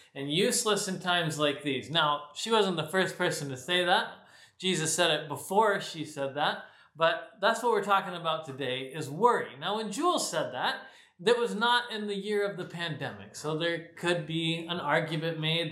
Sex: male